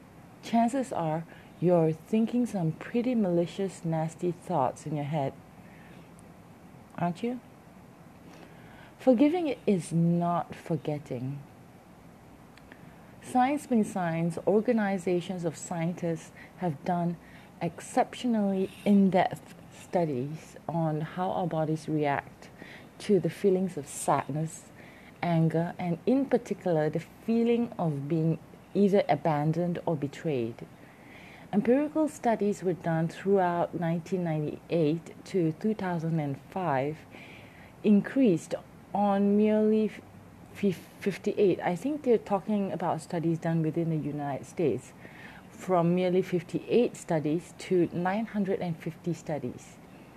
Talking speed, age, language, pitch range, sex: 95 wpm, 30-49, English, 160-205 Hz, female